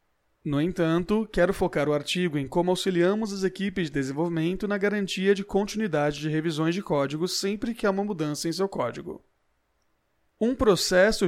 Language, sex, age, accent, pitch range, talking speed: Portuguese, male, 30-49, Brazilian, 155-200 Hz, 165 wpm